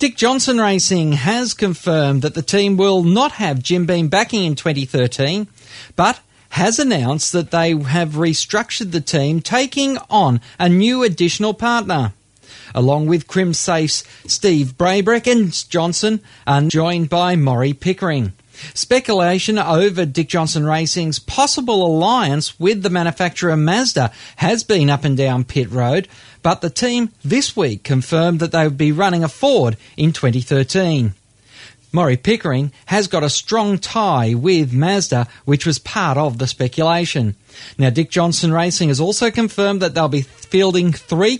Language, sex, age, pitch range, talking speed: English, male, 40-59, 135-190 Hz, 150 wpm